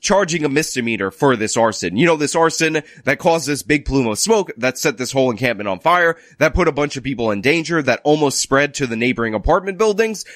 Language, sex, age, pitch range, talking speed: English, male, 20-39, 140-190 Hz, 230 wpm